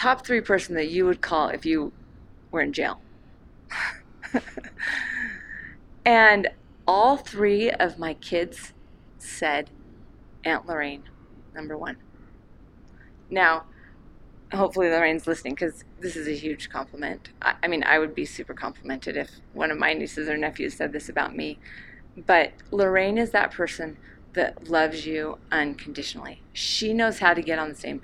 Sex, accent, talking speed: female, American, 150 wpm